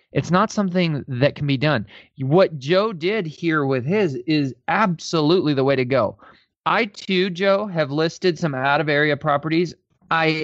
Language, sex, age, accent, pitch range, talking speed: English, male, 20-39, American, 135-165 Hz, 170 wpm